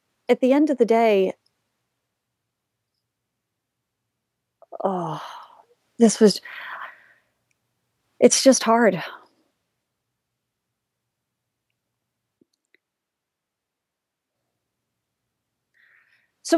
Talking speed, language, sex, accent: 45 wpm, English, female, American